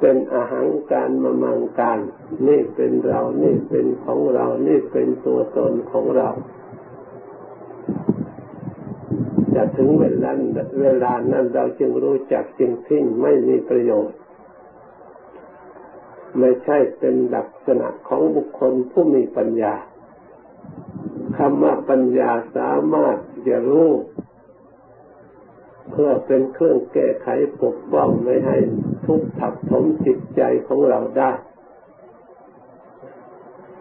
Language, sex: Thai, male